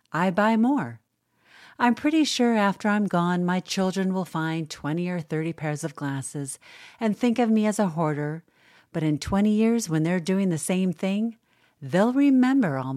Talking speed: 180 wpm